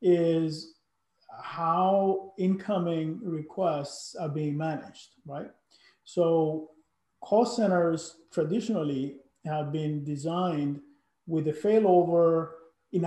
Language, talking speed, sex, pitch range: English, 85 wpm, male, 165-205 Hz